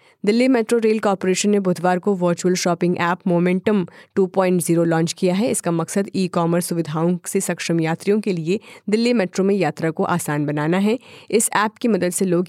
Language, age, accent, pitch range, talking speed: Hindi, 30-49, native, 170-200 Hz, 190 wpm